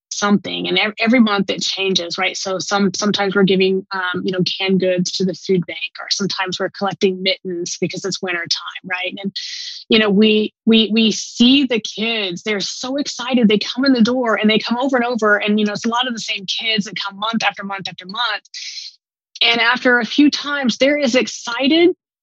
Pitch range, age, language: 190-225 Hz, 20-39, English